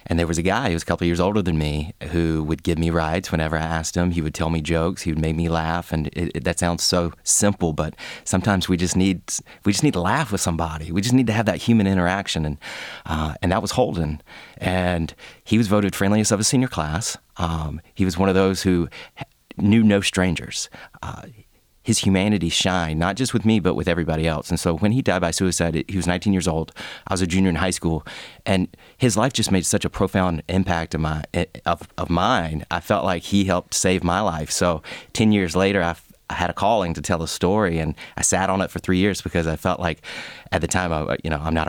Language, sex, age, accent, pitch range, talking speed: English, male, 30-49, American, 80-95 Hz, 245 wpm